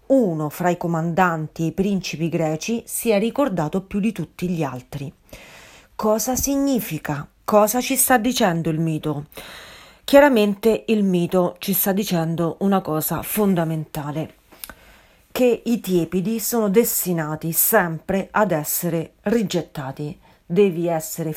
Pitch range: 160-215 Hz